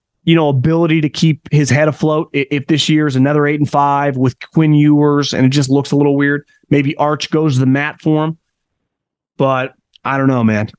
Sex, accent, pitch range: male, American, 130-165 Hz